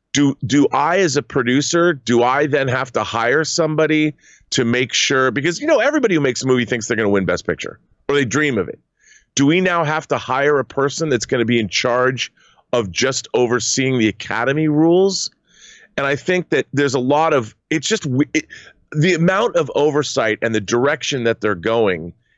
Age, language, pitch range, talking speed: 30-49, English, 120-155 Hz, 205 wpm